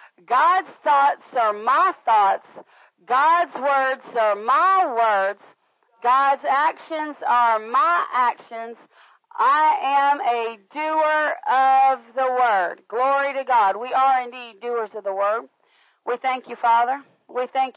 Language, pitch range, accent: English, 245-295 Hz, American